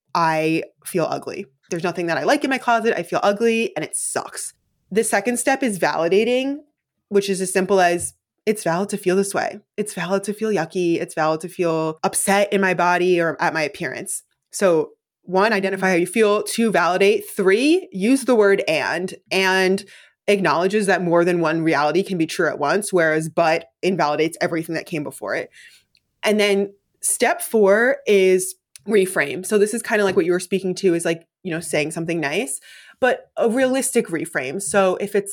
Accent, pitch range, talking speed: American, 175-230 Hz, 195 wpm